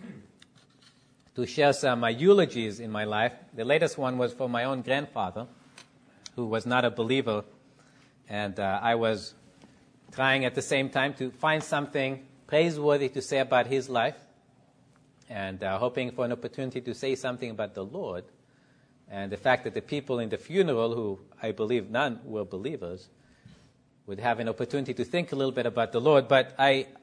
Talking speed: 180 wpm